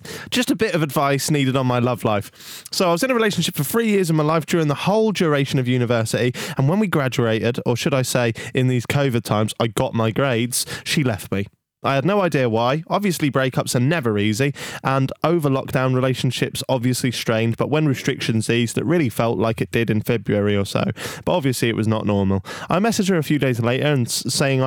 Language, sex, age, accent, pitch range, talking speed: English, male, 20-39, British, 115-145 Hz, 225 wpm